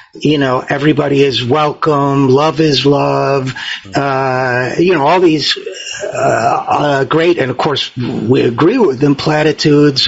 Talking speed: 145 wpm